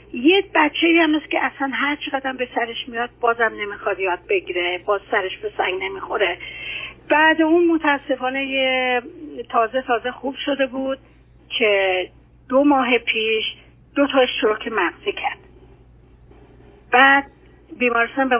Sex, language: female, Persian